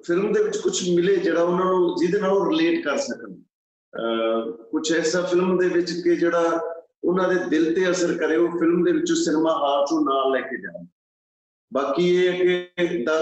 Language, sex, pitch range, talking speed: Punjabi, male, 135-180 Hz, 175 wpm